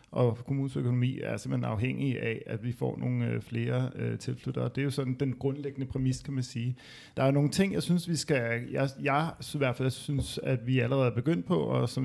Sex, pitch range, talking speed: male, 125-145 Hz, 235 wpm